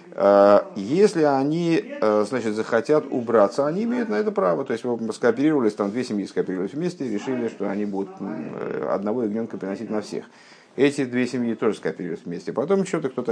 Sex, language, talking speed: male, Russian, 170 wpm